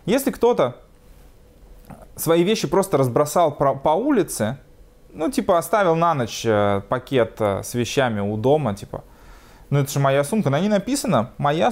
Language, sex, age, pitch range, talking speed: Russian, male, 20-39, 115-165 Hz, 145 wpm